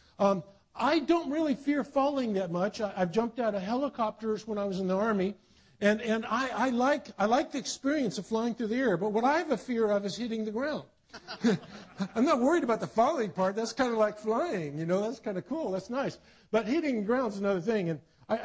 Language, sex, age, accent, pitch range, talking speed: English, male, 50-69, American, 185-240 Hz, 240 wpm